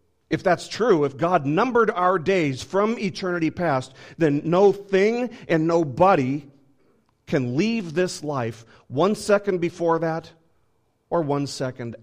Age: 40-59